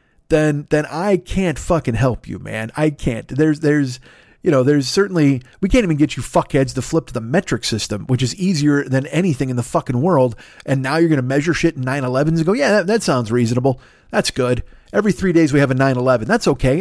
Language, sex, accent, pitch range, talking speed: English, male, American, 125-165 Hz, 225 wpm